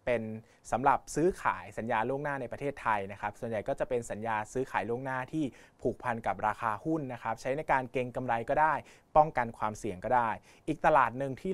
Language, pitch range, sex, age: Thai, 110-135 Hz, male, 20-39